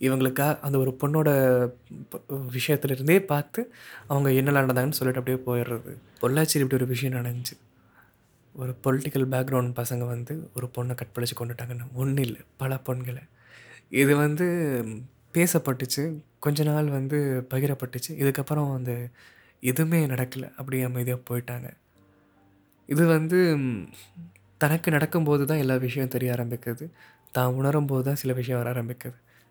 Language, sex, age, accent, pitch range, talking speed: Tamil, male, 20-39, native, 120-140 Hz, 120 wpm